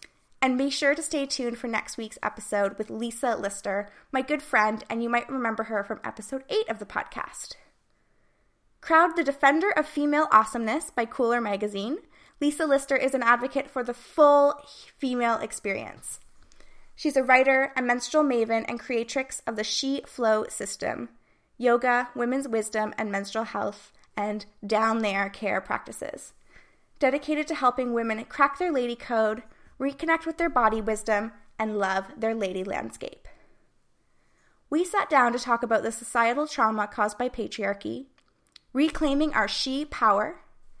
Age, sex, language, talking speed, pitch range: 20-39, female, English, 155 wpm, 220-280 Hz